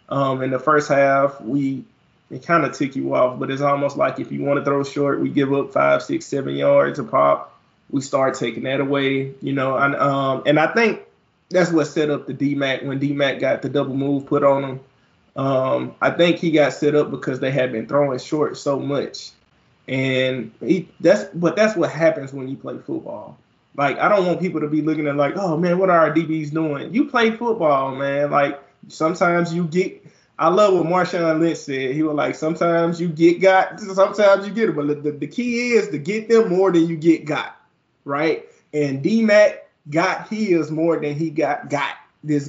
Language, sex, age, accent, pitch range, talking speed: English, male, 20-39, American, 135-170 Hz, 215 wpm